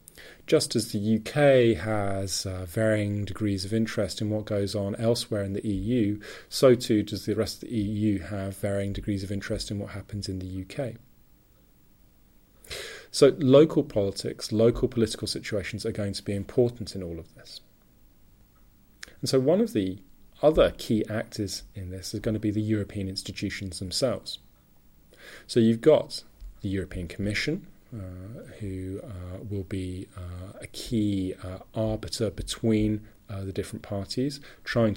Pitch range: 95-110 Hz